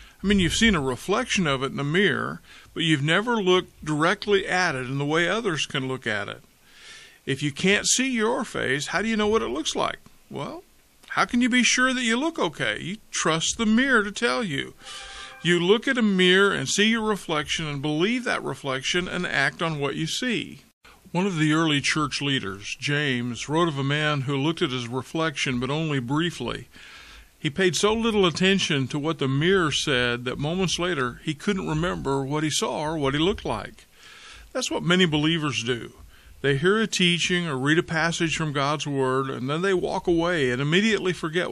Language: English